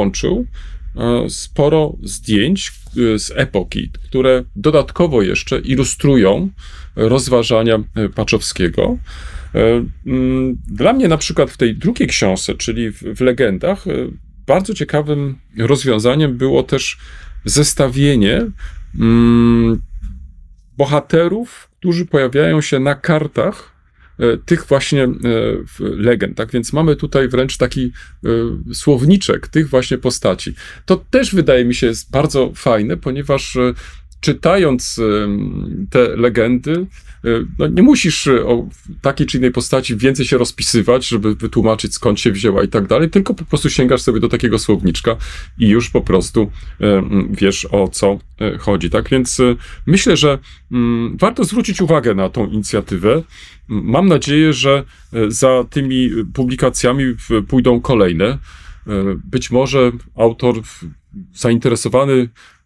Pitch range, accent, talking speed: 110-140 Hz, native, 110 wpm